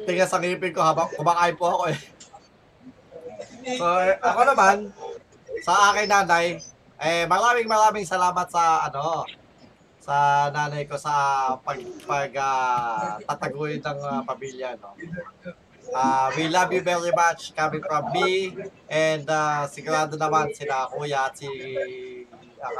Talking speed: 130 wpm